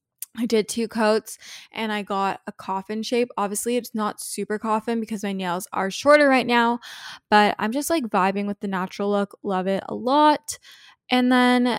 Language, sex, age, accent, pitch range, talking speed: English, female, 10-29, American, 195-220 Hz, 190 wpm